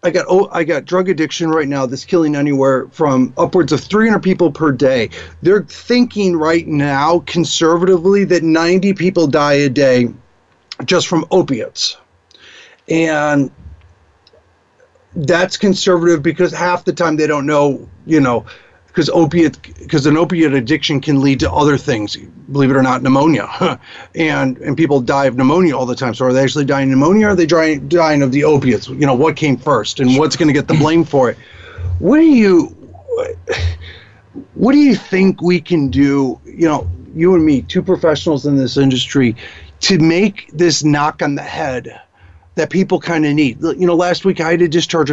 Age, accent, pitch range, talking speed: 40-59, American, 135-175 Hz, 180 wpm